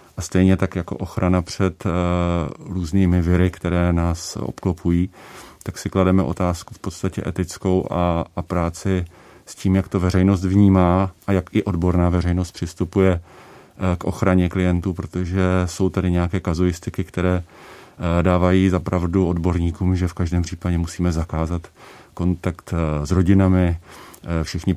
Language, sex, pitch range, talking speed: Czech, male, 85-95 Hz, 135 wpm